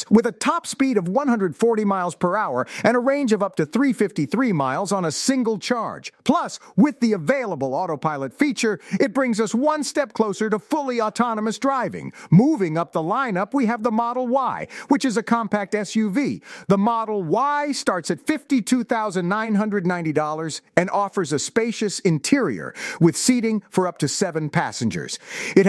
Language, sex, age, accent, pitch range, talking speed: English, male, 50-69, American, 185-245 Hz, 165 wpm